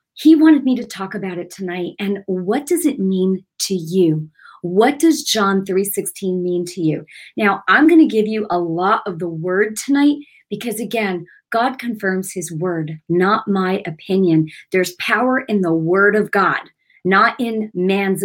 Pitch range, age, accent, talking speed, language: 180-235 Hz, 40-59, American, 175 wpm, English